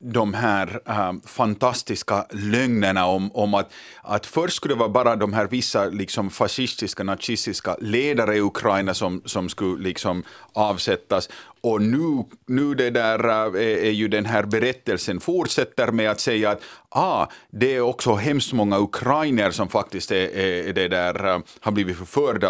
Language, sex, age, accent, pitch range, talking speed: Swedish, male, 30-49, Finnish, 105-130 Hz, 160 wpm